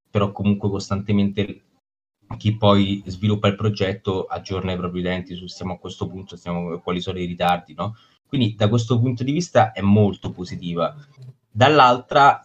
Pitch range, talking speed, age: 100-110 Hz, 160 wpm, 20-39